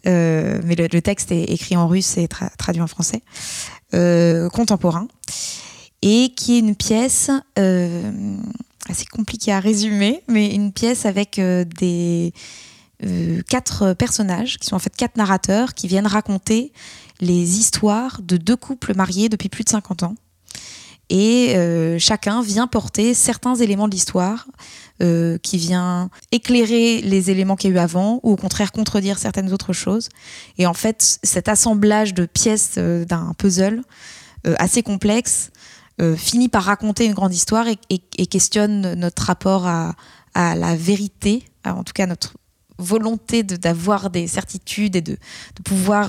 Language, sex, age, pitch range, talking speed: French, female, 20-39, 175-215 Hz, 165 wpm